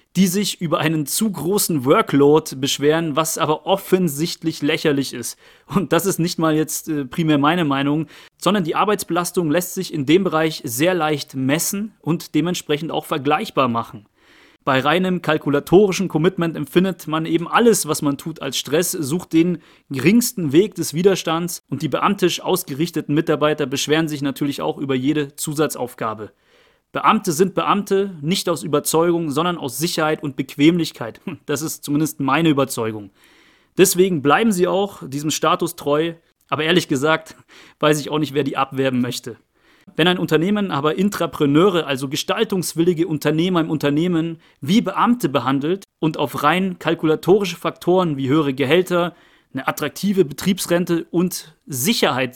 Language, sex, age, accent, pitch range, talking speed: German, male, 30-49, German, 150-180 Hz, 150 wpm